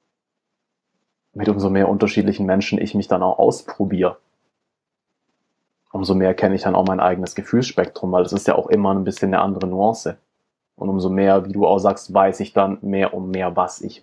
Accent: German